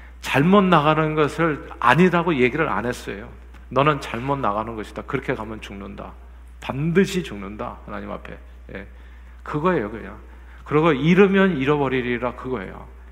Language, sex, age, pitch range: Korean, male, 50-69, 105-170 Hz